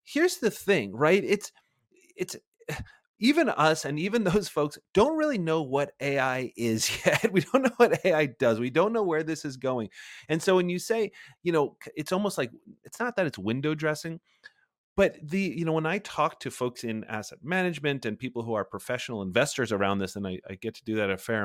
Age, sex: 30-49, male